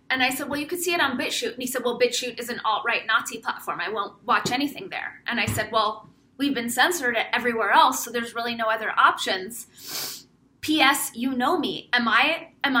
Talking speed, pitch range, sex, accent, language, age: 210 wpm, 260-340 Hz, female, American, English, 30-49